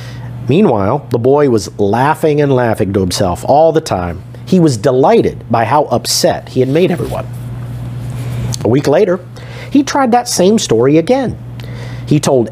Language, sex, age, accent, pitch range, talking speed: English, male, 50-69, American, 115-140 Hz, 160 wpm